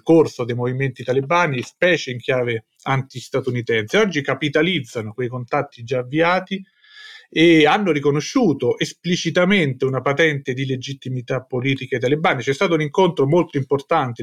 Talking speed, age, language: 130 wpm, 40-59, Italian